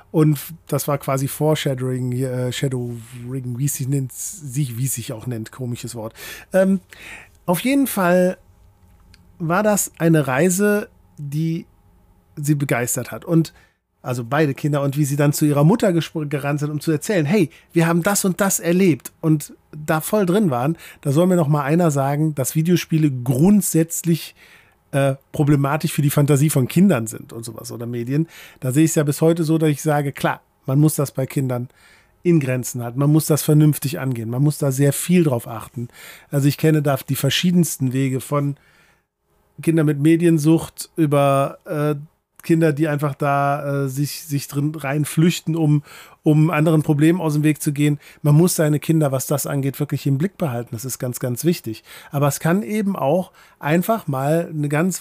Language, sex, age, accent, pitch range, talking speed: German, male, 40-59, German, 135-165 Hz, 180 wpm